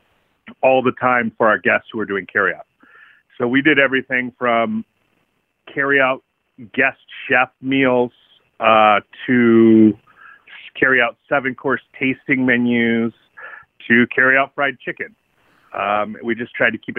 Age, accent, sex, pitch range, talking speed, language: 40-59, American, male, 115-135 Hz, 140 wpm, English